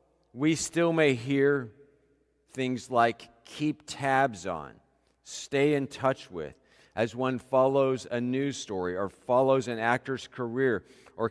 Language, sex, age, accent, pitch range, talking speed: English, male, 50-69, American, 110-145 Hz, 135 wpm